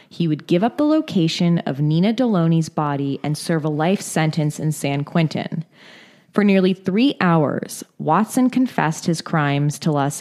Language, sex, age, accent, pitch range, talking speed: English, female, 20-39, American, 155-210 Hz, 165 wpm